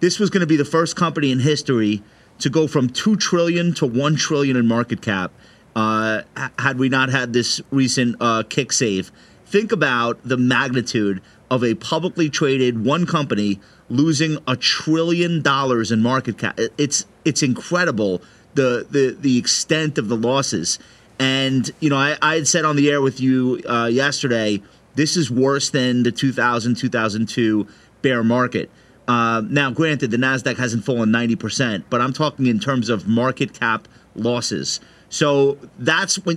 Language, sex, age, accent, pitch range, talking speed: English, male, 30-49, American, 115-150 Hz, 165 wpm